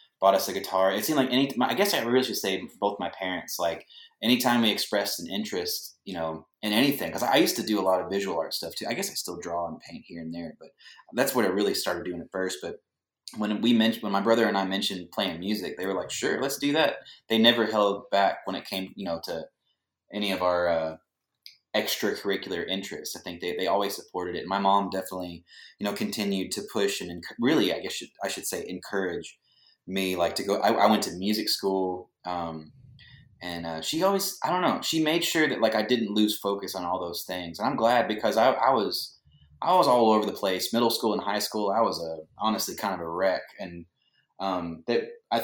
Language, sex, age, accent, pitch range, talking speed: English, male, 20-39, American, 90-115 Hz, 240 wpm